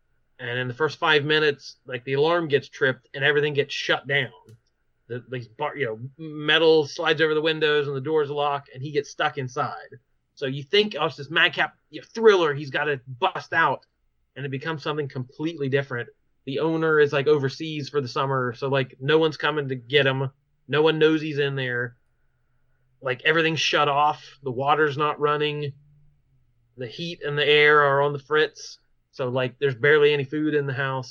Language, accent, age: English, American, 30-49